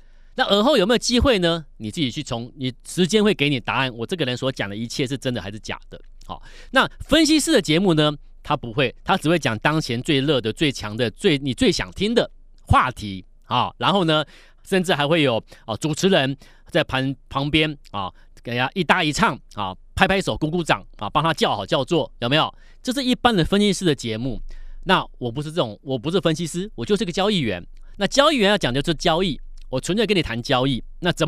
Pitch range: 125-195 Hz